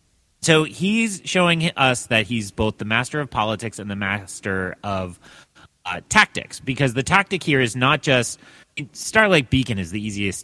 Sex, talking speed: male, 170 wpm